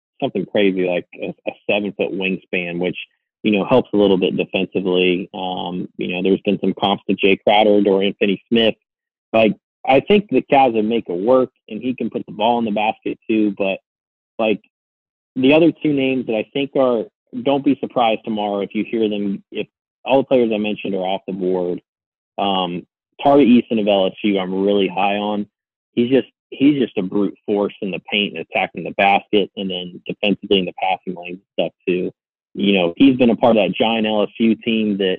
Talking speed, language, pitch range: 205 wpm, English, 95-120 Hz